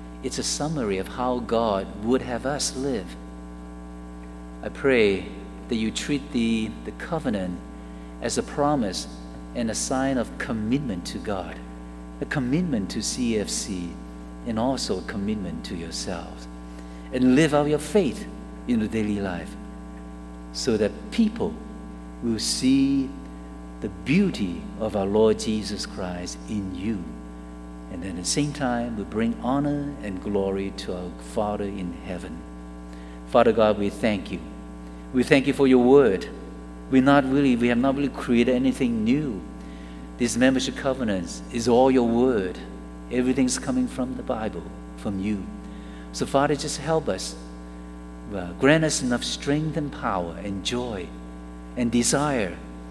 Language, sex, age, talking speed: English, male, 50-69, 145 wpm